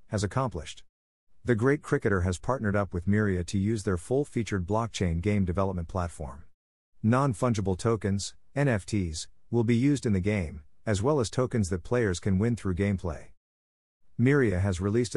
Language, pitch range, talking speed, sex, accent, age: English, 90-115 Hz, 160 wpm, male, American, 50-69